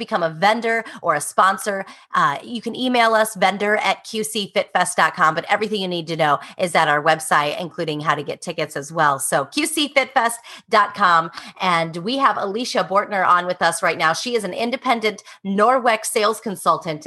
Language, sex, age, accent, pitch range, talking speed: English, female, 30-49, American, 165-215 Hz, 175 wpm